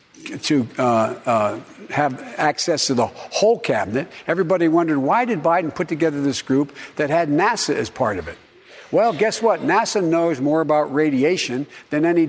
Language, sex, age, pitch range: English, male, 60-79, 140-180 Hz